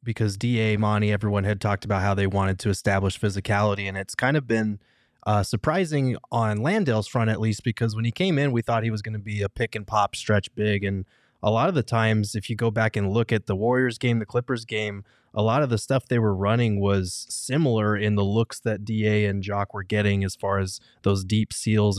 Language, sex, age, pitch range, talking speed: English, male, 20-39, 100-115 Hz, 230 wpm